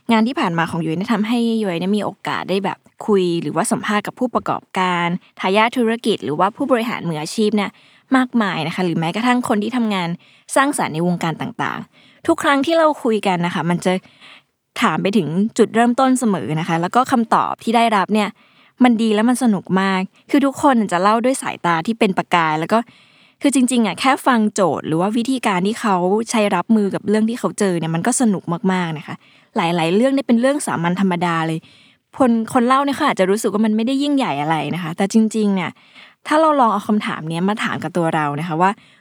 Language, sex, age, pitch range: Thai, female, 20-39, 180-240 Hz